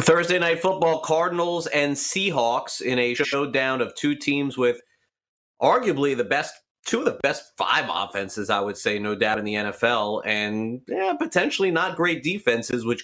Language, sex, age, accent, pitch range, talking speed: English, male, 30-49, American, 110-145 Hz, 170 wpm